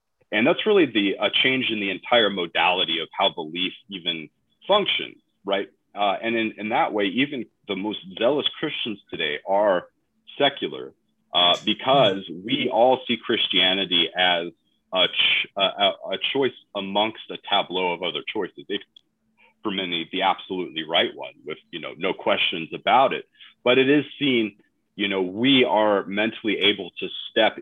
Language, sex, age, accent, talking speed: English, male, 30-49, American, 160 wpm